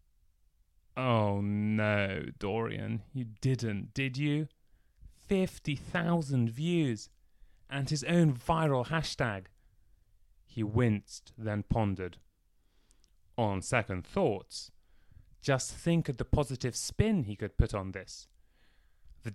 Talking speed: 100 wpm